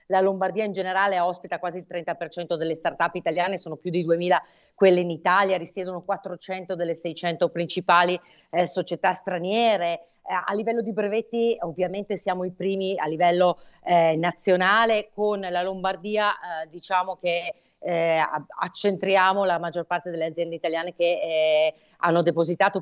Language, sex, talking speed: Italian, female, 150 wpm